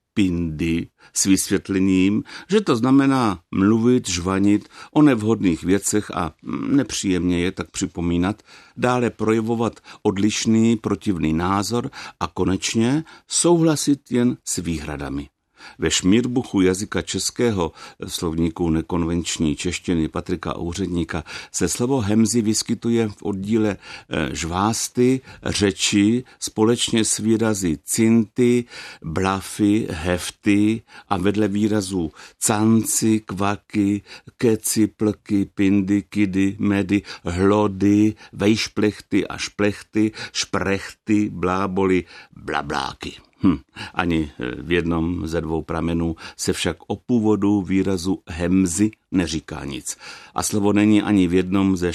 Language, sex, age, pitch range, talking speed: Czech, male, 60-79, 90-110 Hz, 100 wpm